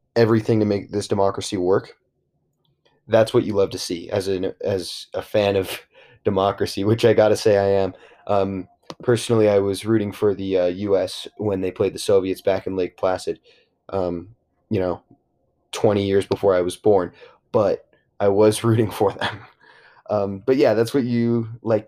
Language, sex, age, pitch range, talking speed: English, male, 20-39, 100-115 Hz, 180 wpm